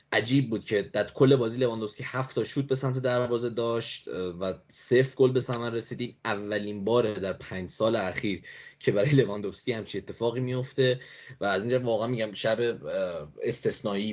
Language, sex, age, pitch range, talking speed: English, male, 10-29, 110-135 Hz, 160 wpm